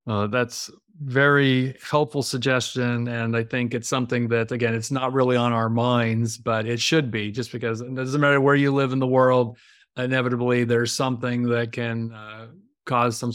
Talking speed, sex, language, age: 185 wpm, male, English, 40-59